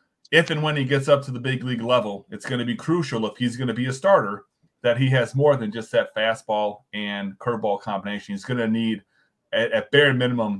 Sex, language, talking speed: male, English, 230 wpm